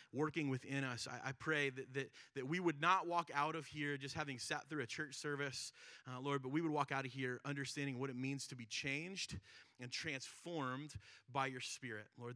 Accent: American